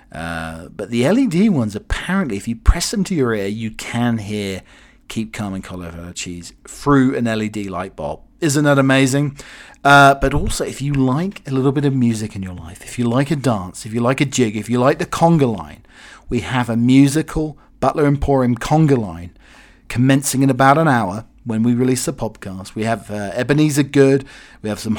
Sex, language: male, English